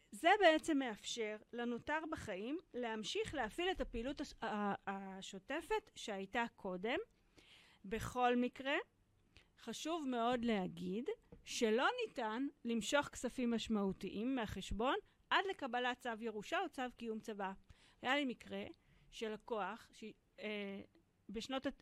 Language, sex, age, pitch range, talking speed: Hebrew, female, 40-59, 205-275 Hz, 105 wpm